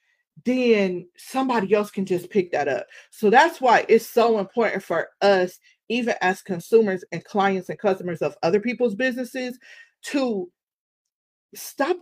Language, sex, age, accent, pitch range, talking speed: English, female, 40-59, American, 195-285 Hz, 145 wpm